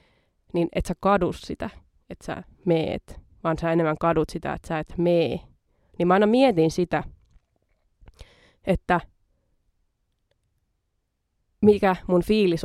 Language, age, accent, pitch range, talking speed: Finnish, 20-39, native, 155-185 Hz, 125 wpm